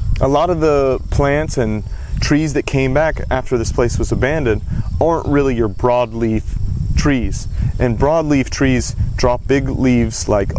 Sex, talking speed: male, 155 wpm